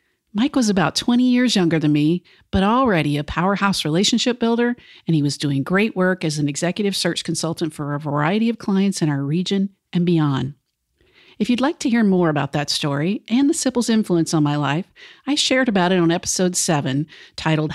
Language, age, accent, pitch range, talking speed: English, 50-69, American, 160-215 Hz, 200 wpm